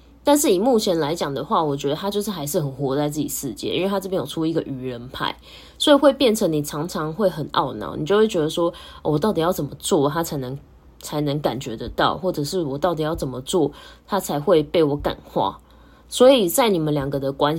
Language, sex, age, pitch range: Chinese, female, 10-29, 140-185 Hz